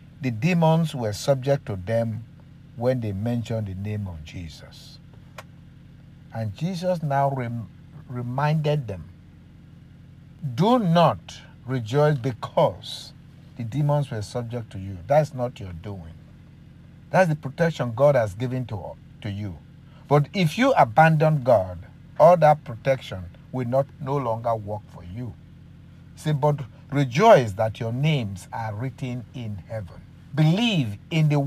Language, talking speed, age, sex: English, 135 wpm, 50-69, male